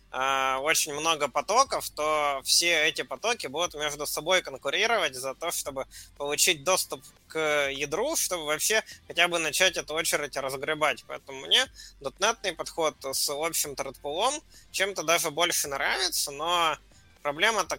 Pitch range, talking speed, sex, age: 135-180 Hz, 130 wpm, male, 20-39